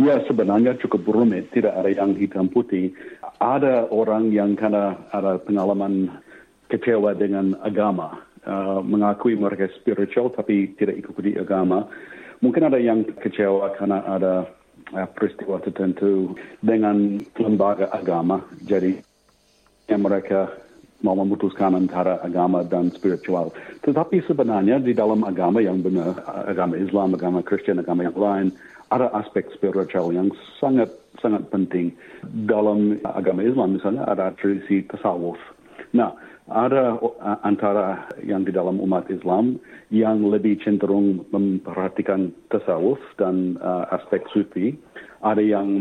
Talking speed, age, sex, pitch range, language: 120 wpm, 50-69, male, 95-105 Hz, Indonesian